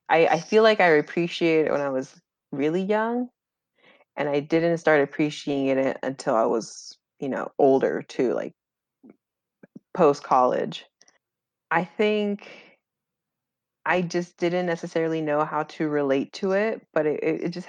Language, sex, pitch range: English, female, 150-180 Hz